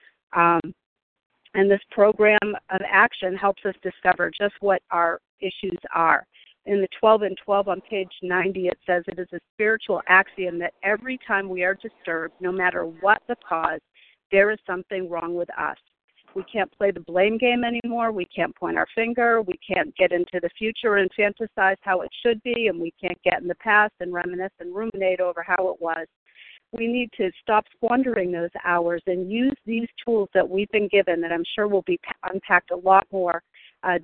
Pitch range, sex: 180-210 Hz, female